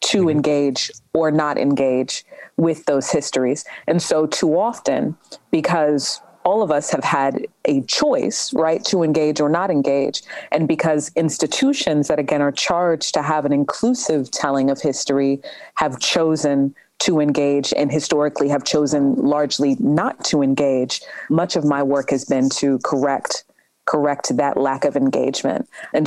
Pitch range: 140-160 Hz